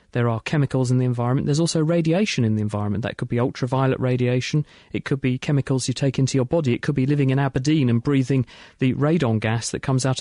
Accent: British